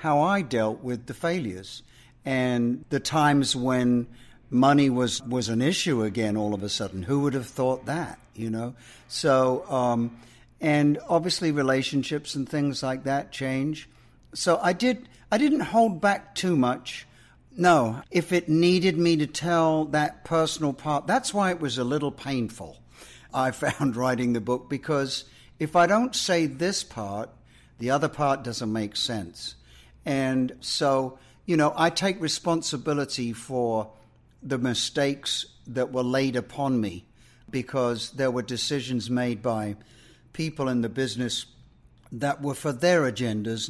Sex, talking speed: male, 150 wpm